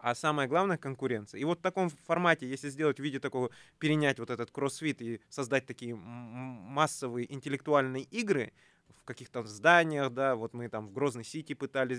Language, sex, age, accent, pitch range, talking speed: Russian, male, 20-39, native, 115-140 Hz, 175 wpm